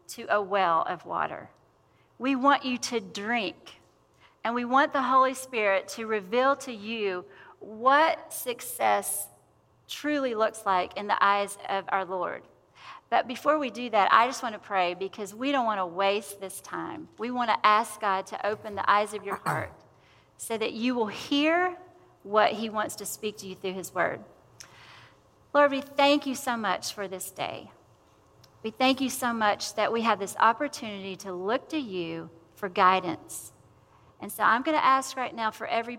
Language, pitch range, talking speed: English, 205-255 Hz, 185 wpm